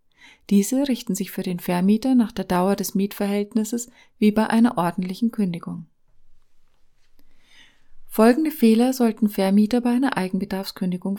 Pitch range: 185-230 Hz